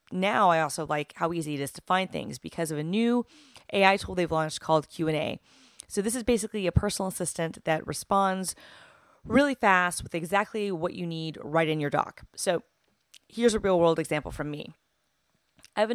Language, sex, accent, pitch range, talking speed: English, female, American, 155-190 Hz, 190 wpm